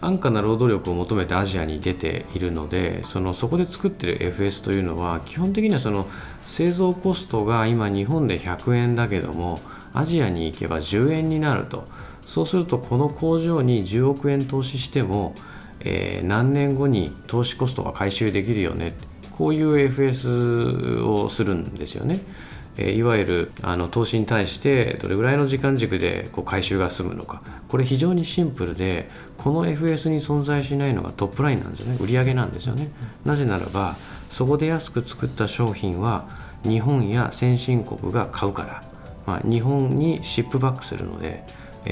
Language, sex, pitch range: Japanese, male, 95-140 Hz